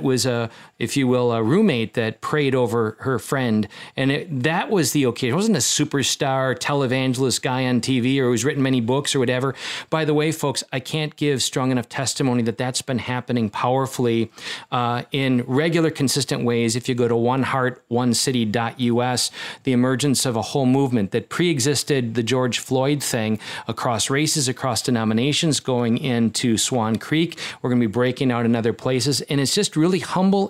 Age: 40-59